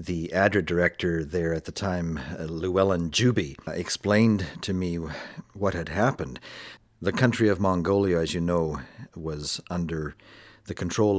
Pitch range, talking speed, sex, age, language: 85-105 Hz, 140 wpm, male, 50-69, English